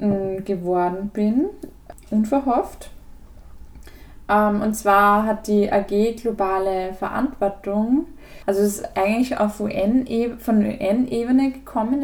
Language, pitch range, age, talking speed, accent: German, 205-260 Hz, 10-29, 95 wpm, German